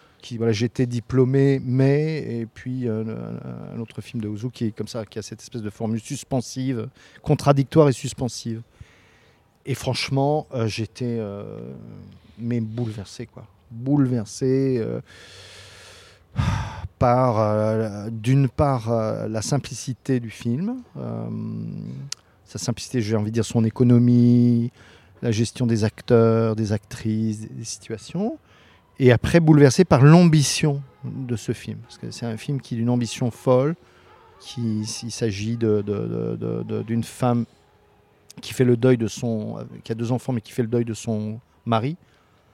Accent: French